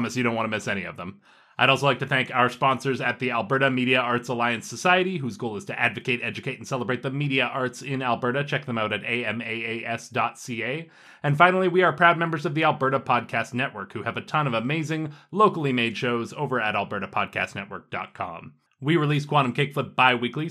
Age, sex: 30-49, male